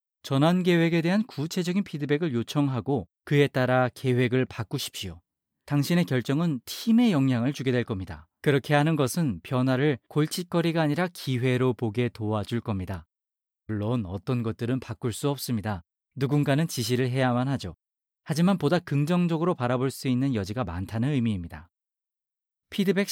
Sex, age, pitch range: male, 40-59, 115-150 Hz